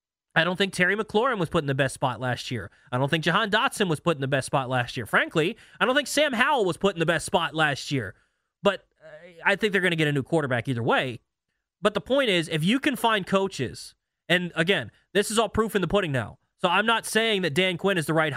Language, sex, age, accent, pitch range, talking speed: English, male, 20-39, American, 155-200 Hz, 265 wpm